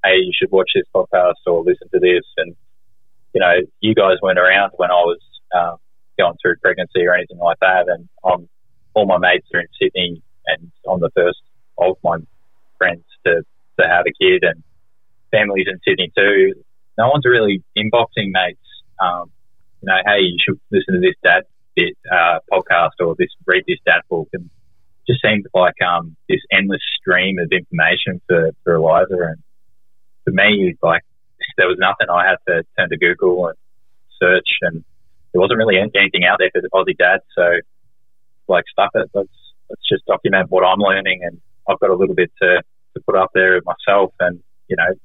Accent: Australian